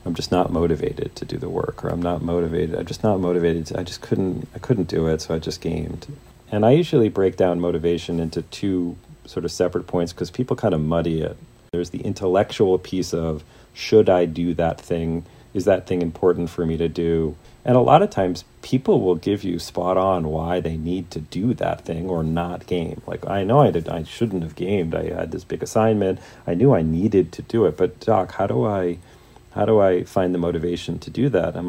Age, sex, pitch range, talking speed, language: 40-59, male, 85-105 Hz, 230 wpm, English